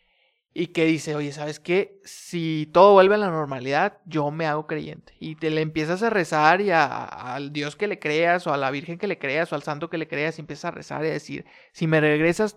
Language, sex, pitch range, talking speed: Spanish, male, 155-190 Hz, 255 wpm